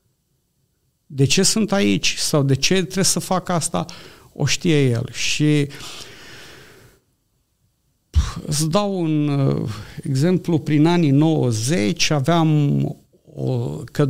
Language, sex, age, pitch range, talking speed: Romanian, male, 50-69, 130-170 Hz, 100 wpm